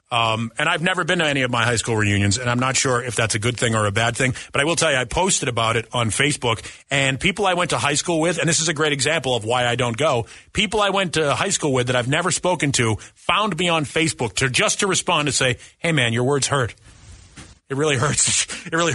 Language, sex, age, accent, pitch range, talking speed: English, male, 30-49, American, 120-200 Hz, 275 wpm